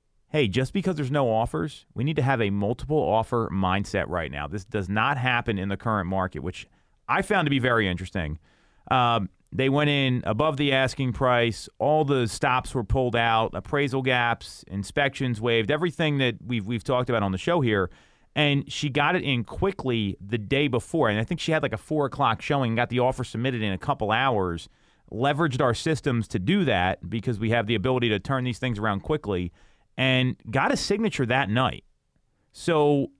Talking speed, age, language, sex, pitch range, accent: 200 wpm, 30-49, English, male, 110-145 Hz, American